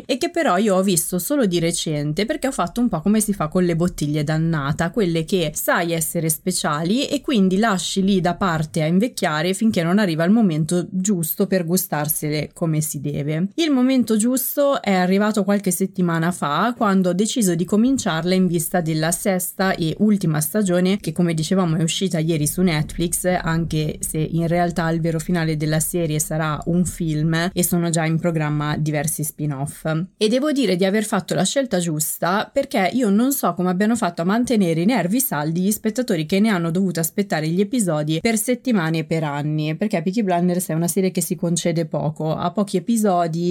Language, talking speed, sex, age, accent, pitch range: Italian, 195 wpm, female, 20-39, native, 165-205 Hz